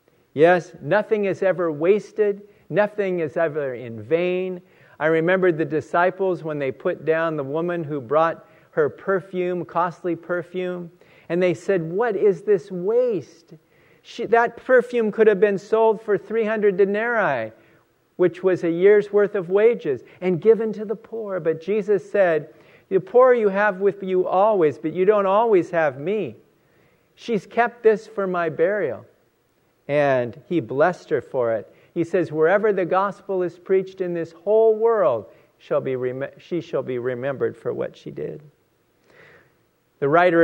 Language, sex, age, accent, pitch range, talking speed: English, male, 50-69, American, 160-210 Hz, 155 wpm